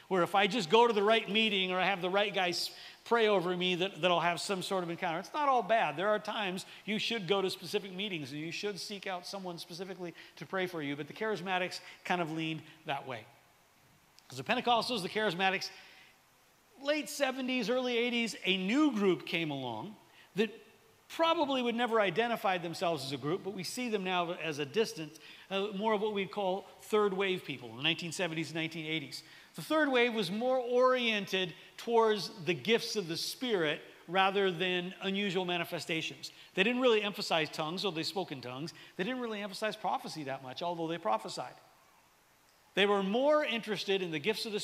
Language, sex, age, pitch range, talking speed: English, male, 40-59, 170-220 Hz, 200 wpm